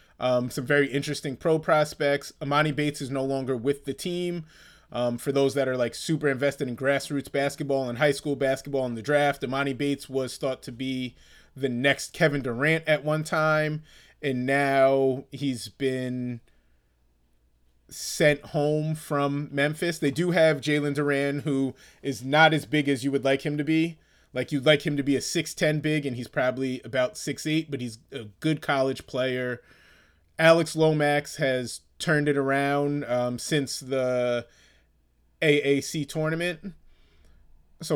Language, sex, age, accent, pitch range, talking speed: English, male, 30-49, American, 125-155 Hz, 160 wpm